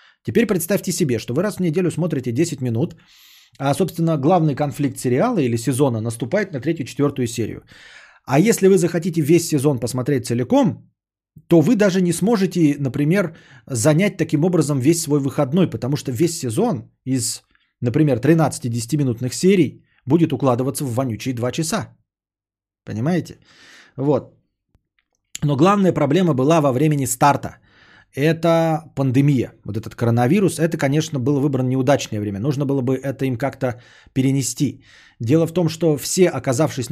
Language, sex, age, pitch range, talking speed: Bulgarian, male, 30-49, 120-165 Hz, 145 wpm